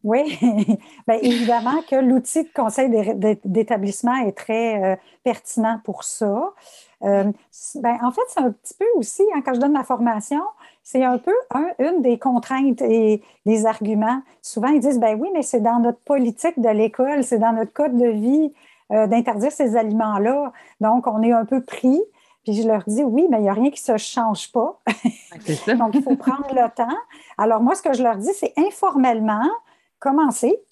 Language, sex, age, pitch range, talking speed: French, female, 50-69, 215-270 Hz, 190 wpm